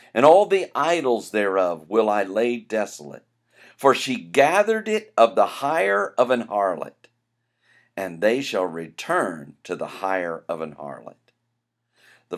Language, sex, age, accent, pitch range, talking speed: English, male, 50-69, American, 100-120 Hz, 145 wpm